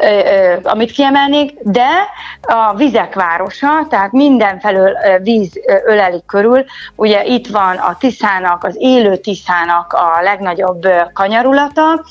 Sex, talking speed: female, 105 wpm